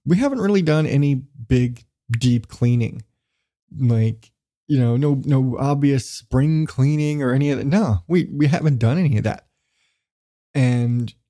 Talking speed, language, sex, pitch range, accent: 155 wpm, English, male, 115-150 Hz, American